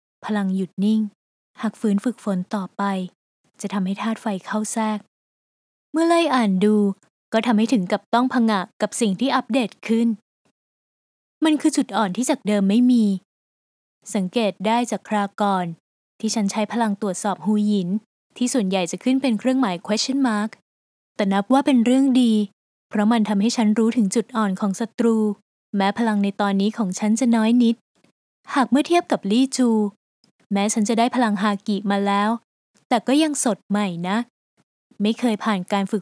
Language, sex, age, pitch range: Thai, female, 20-39, 205-250 Hz